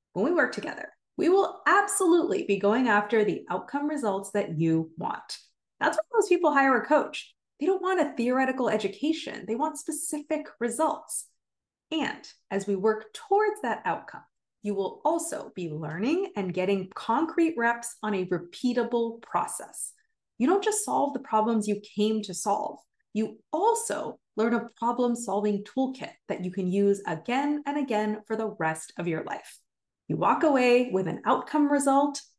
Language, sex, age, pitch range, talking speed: English, female, 30-49, 205-300 Hz, 165 wpm